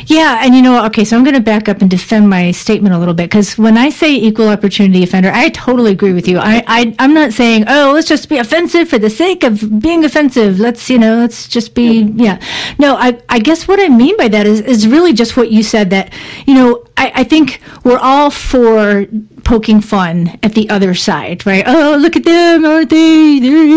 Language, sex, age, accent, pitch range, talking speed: English, female, 40-59, American, 205-290 Hz, 230 wpm